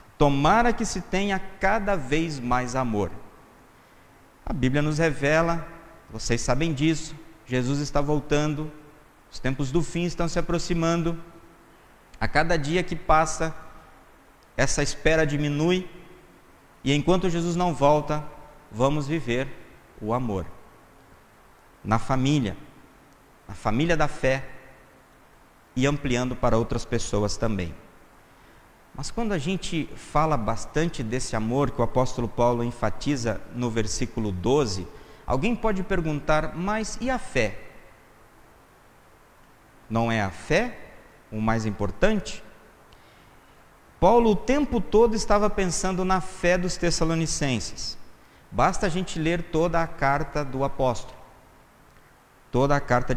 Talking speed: 120 wpm